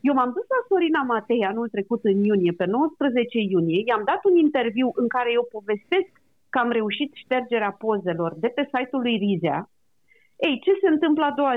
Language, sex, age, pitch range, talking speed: Romanian, female, 40-59, 215-290 Hz, 190 wpm